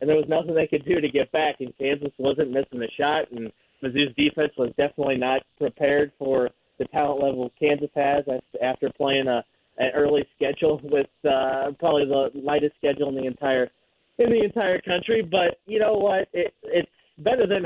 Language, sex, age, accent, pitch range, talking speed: English, male, 30-49, American, 130-155 Hz, 190 wpm